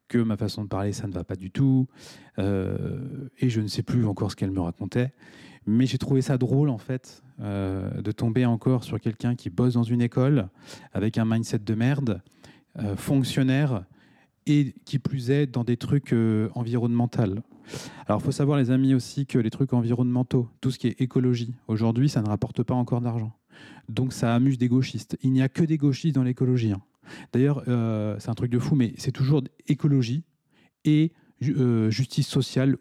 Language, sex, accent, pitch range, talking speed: French, male, French, 115-145 Hz, 200 wpm